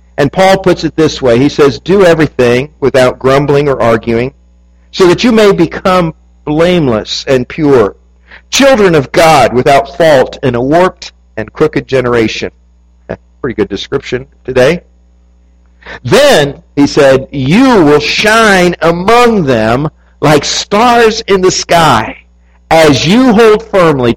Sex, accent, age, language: male, American, 50-69, English